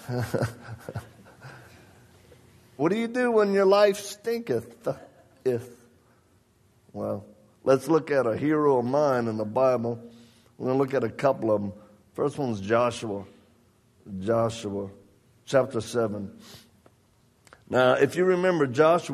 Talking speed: 120 wpm